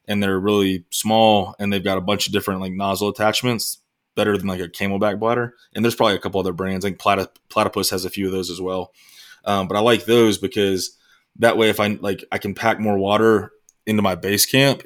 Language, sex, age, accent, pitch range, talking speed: English, male, 20-39, American, 95-105 Hz, 230 wpm